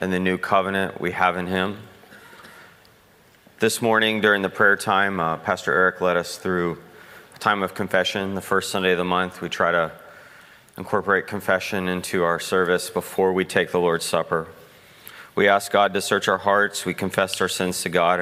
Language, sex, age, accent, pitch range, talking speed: English, male, 30-49, American, 90-105 Hz, 190 wpm